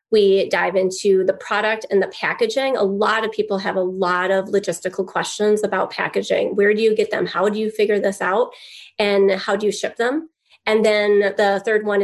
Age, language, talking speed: 30-49, English, 210 wpm